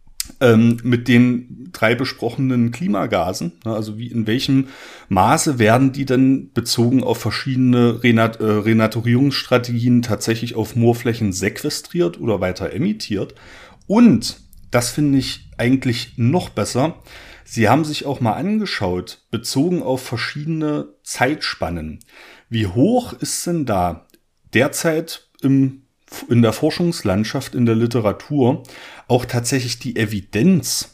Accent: German